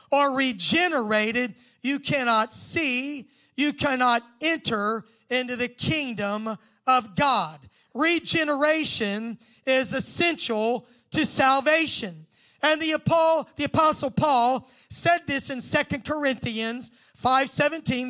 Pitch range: 235-290 Hz